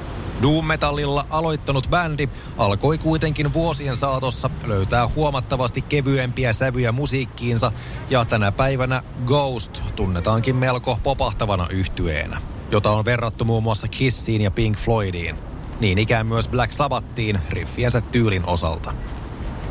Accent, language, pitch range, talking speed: native, Finnish, 105-135 Hz, 115 wpm